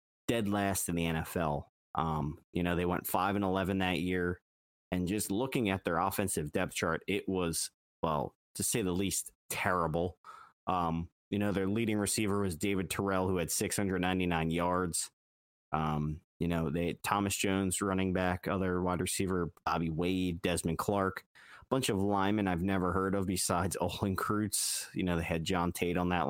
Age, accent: 30-49, American